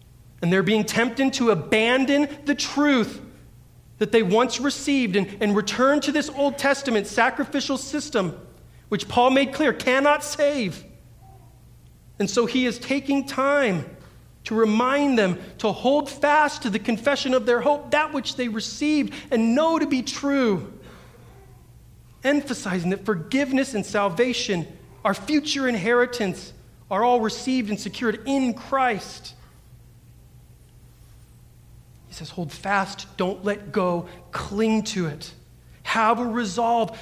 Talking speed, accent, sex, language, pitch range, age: 135 wpm, American, male, English, 185-255 Hz, 40-59